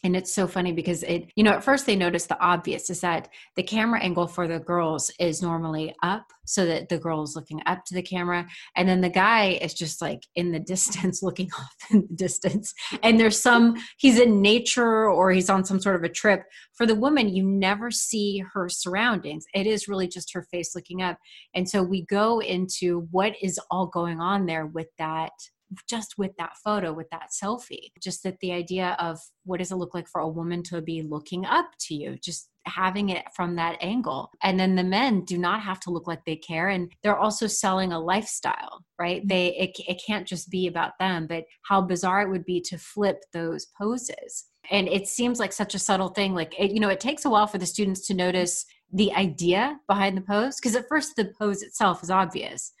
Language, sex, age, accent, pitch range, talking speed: English, female, 30-49, American, 175-205 Hz, 225 wpm